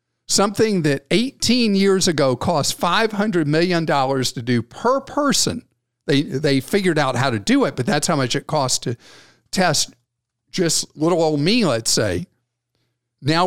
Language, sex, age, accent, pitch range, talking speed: English, male, 50-69, American, 120-150 Hz, 155 wpm